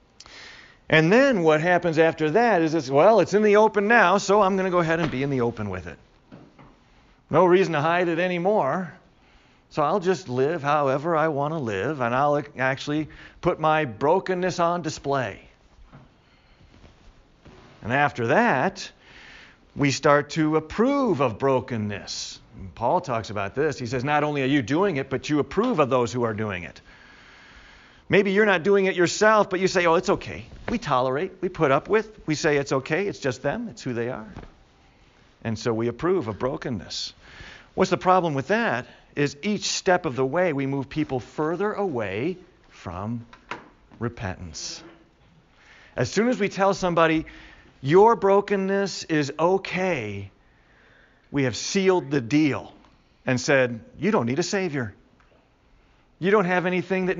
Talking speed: 170 wpm